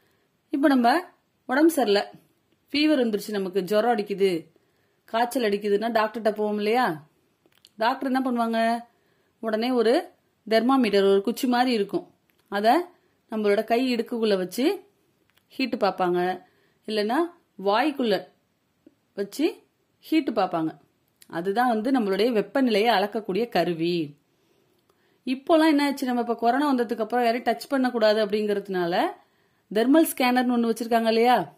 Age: 30-49